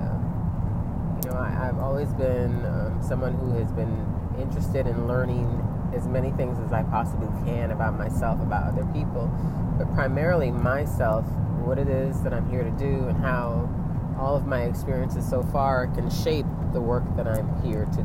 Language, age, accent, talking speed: English, 30-49, American, 165 wpm